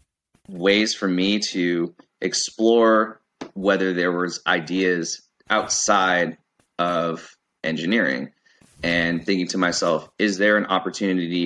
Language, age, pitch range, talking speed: English, 20-39, 85-100 Hz, 105 wpm